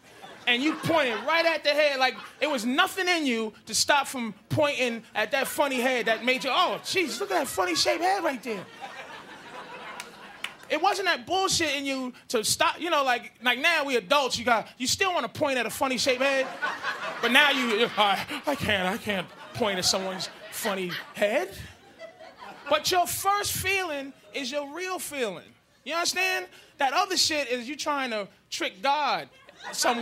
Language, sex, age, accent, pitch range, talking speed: English, male, 20-39, American, 210-300 Hz, 190 wpm